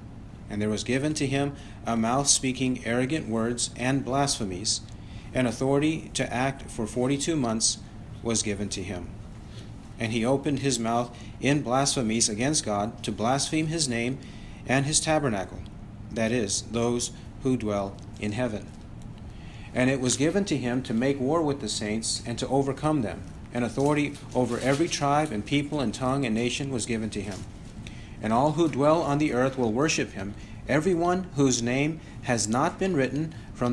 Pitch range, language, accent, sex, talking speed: 110-135 Hz, English, American, male, 170 wpm